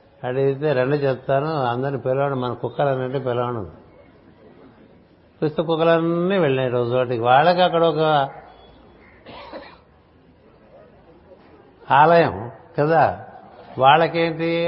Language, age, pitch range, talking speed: Telugu, 60-79, 130-160 Hz, 85 wpm